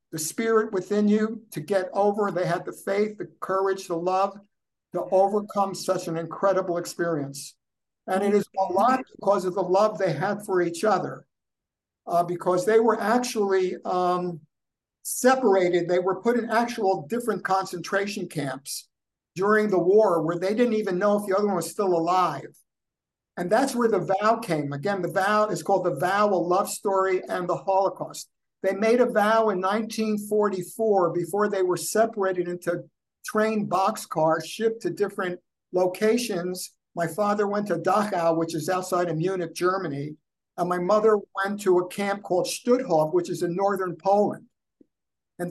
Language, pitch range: English, 180-210 Hz